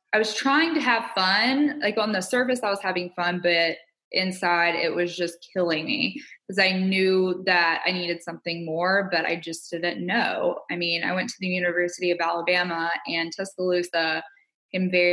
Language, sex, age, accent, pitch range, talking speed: English, female, 20-39, American, 170-195 Hz, 185 wpm